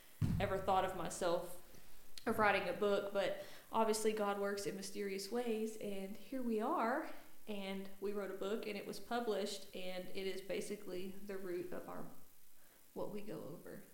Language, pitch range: English, 180-205 Hz